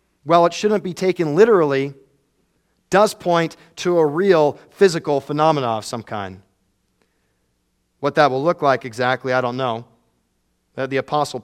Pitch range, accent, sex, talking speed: 140-185 Hz, American, male, 140 wpm